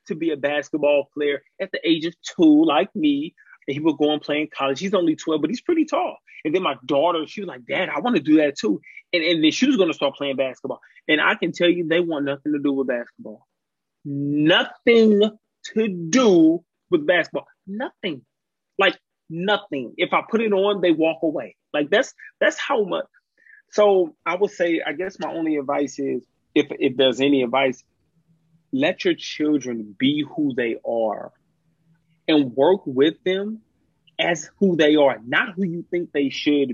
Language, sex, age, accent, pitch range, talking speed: English, male, 30-49, American, 145-190 Hz, 195 wpm